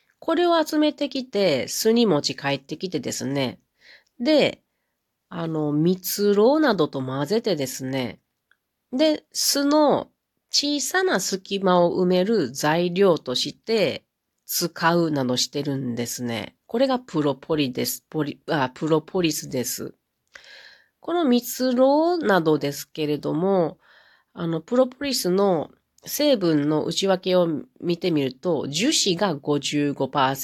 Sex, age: female, 40-59